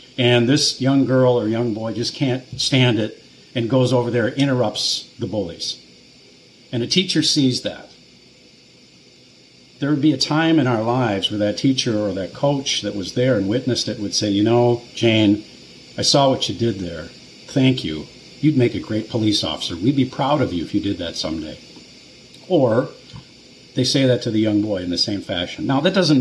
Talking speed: 200 wpm